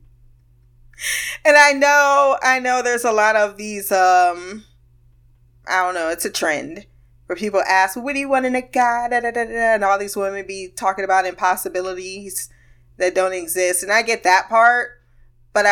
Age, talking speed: 20-39, 170 wpm